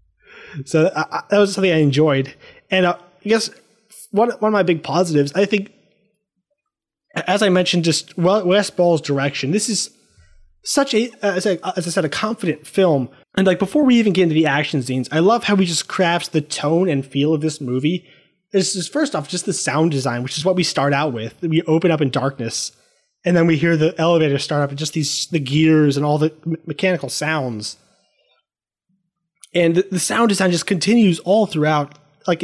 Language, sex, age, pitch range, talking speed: English, male, 20-39, 150-190 Hz, 205 wpm